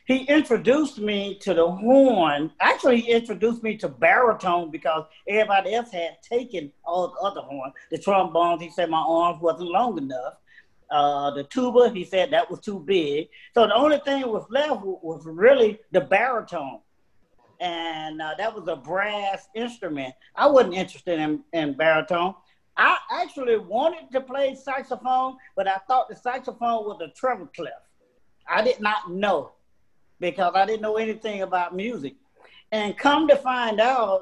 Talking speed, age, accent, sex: 165 wpm, 40-59, American, male